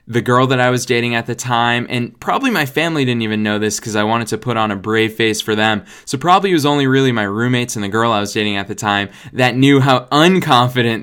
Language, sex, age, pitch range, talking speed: English, male, 10-29, 105-130 Hz, 265 wpm